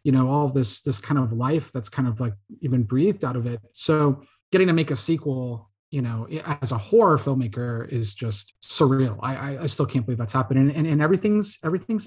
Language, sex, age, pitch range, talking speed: English, male, 30-49, 125-155 Hz, 225 wpm